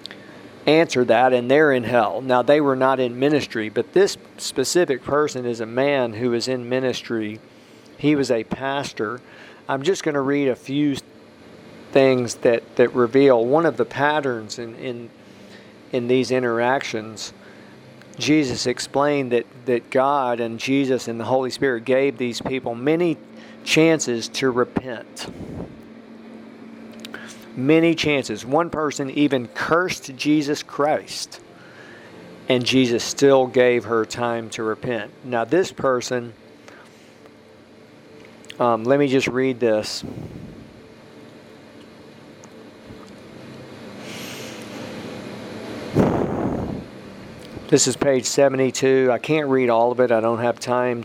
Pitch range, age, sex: 115-140 Hz, 50-69, male